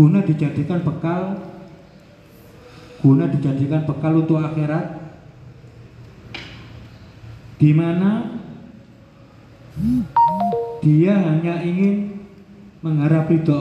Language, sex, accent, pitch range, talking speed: Indonesian, male, native, 125-170 Hz, 60 wpm